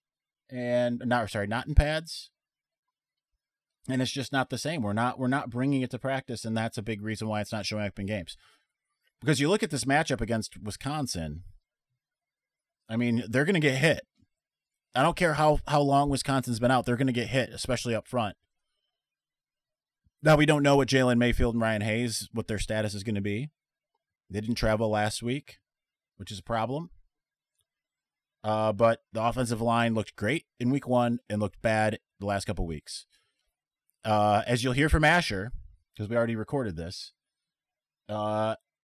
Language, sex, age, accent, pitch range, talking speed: English, male, 30-49, American, 105-135 Hz, 185 wpm